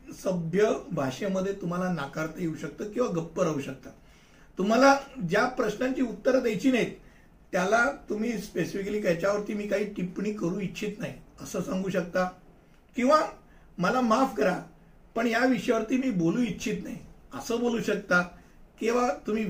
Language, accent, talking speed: Hindi, native, 80 wpm